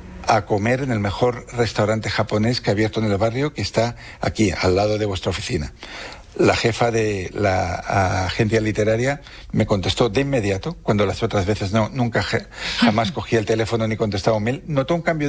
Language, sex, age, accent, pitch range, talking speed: Spanish, male, 60-79, Spanish, 105-120 Hz, 190 wpm